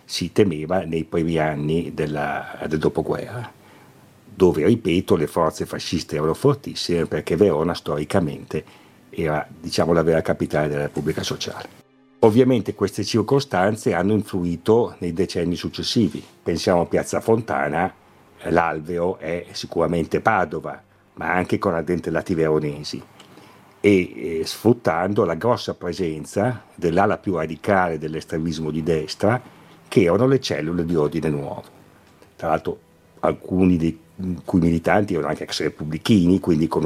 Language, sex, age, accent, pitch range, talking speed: Italian, male, 50-69, native, 80-100 Hz, 130 wpm